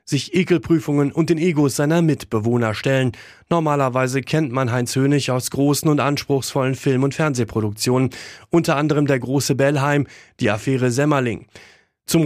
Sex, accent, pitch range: male, German, 120-150 Hz